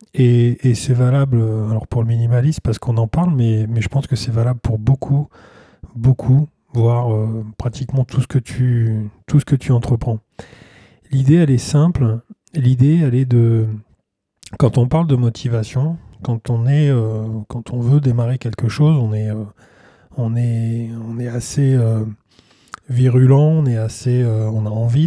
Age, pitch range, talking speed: 20-39, 115-135 Hz, 175 wpm